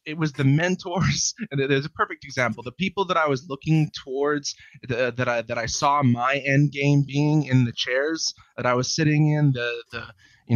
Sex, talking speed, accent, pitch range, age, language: male, 210 wpm, American, 120-140 Hz, 20-39, English